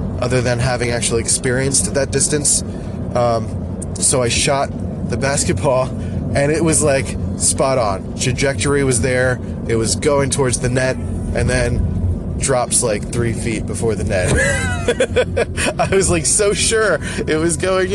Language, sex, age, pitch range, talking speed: English, male, 20-39, 95-125 Hz, 150 wpm